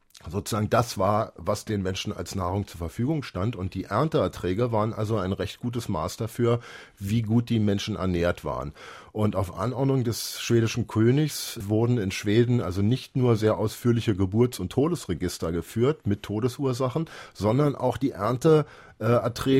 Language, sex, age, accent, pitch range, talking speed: German, male, 50-69, German, 95-125 Hz, 155 wpm